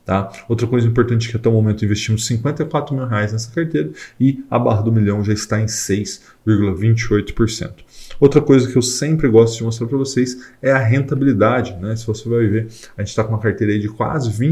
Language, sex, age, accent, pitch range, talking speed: Portuguese, male, 20-39, Brazilian, 105-125 Hz, 205 wpm